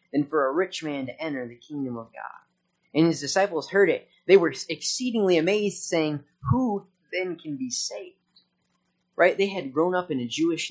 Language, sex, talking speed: English, male, 190 wpm